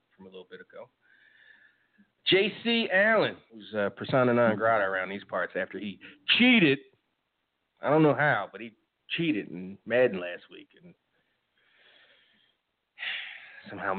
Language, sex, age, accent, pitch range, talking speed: English, male, 30-49, American, 105-155 Hz, 130 wpm